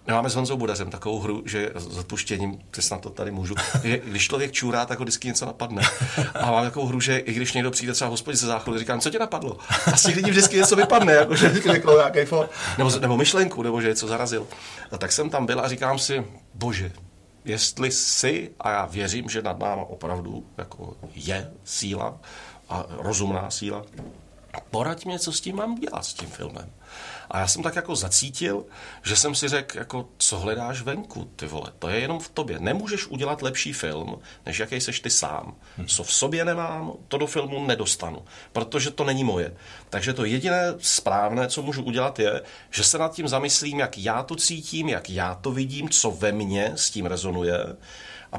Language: Czech